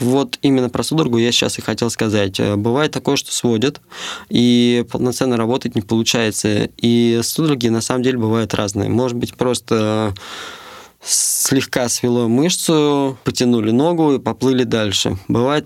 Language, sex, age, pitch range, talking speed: Russian, male, 20-39, 110-130 Hz, 140 wpm